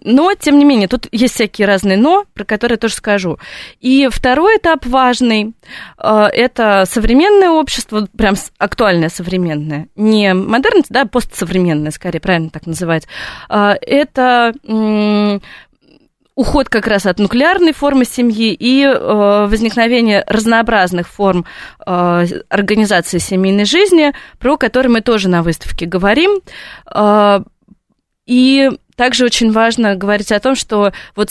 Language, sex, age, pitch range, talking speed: Russian, female, 20-39, 200-255 Hz, 120 wpm